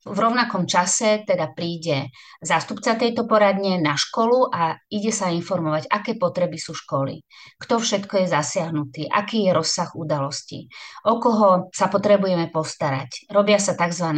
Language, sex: Slovak, female